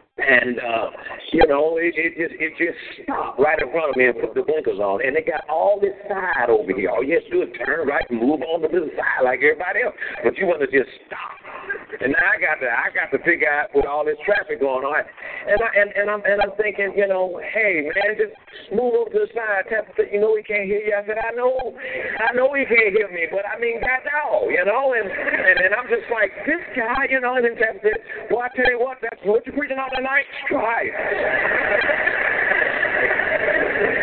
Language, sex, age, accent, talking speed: English, male, 50-69, American, 235 wpm